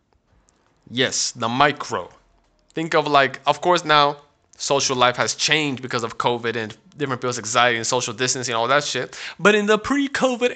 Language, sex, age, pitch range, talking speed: English, male, 20-39, 120-150 Hz, 170 wpm